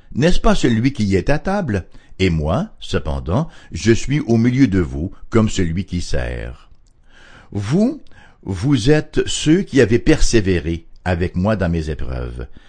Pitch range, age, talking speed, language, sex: 85-125 Hz, 60-79, 150 wpm, English, male